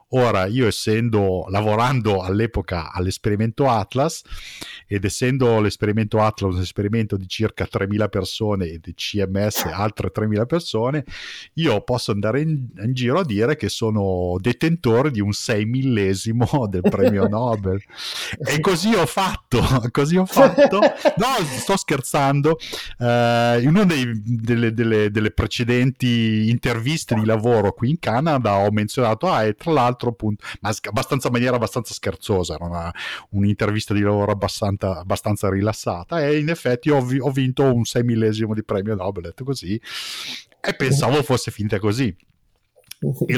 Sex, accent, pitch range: male, native, 100-125 Hz